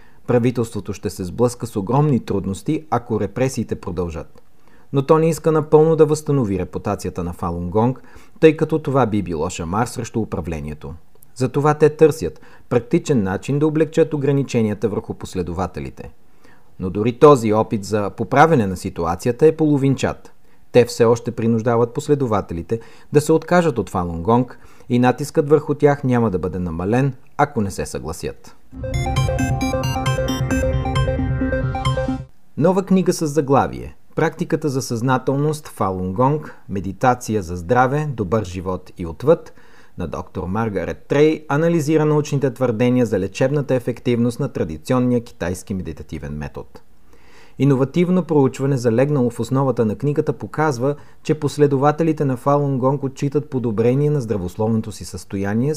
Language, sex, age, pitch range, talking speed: Bulgarian, male, 40-59, 100-145 Hz, 125 wpm